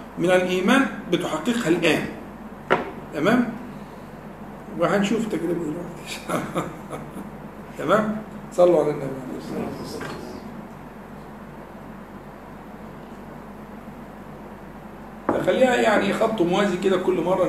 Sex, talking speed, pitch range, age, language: male, 70 wpm, 165-225 Hz, 50-69, Arabic